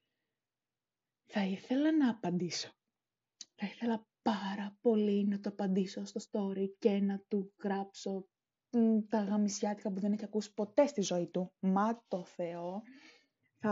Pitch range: 195-245 Hz